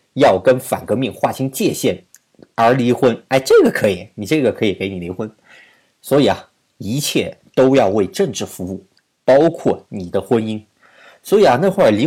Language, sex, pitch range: Chinese, male, 105-170 Hz